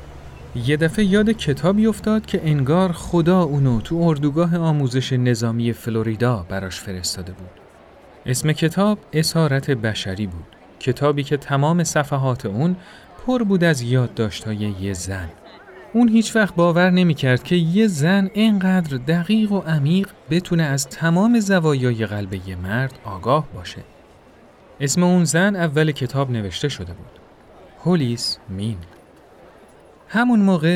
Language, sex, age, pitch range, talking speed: Persian, male, 30-49, 115-175 Hz, 130 wpm